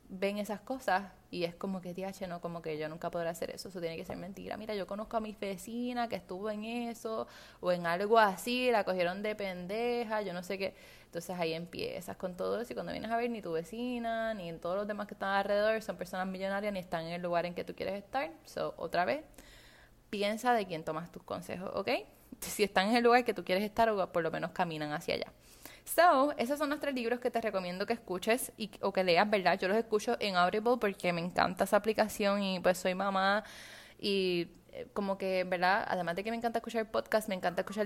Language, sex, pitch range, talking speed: Spanish, female, 185-230 Hz, 235 wpm